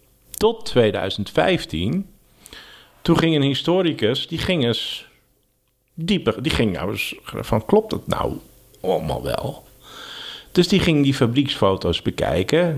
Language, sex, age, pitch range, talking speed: Dutch, male, 50-69, 100-155 Hz, 120 wpm